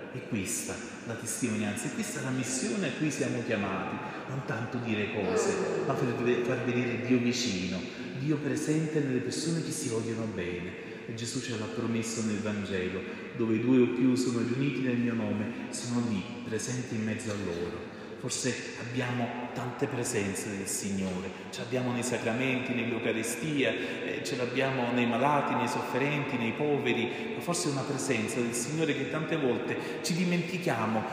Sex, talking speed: male, 160 wpm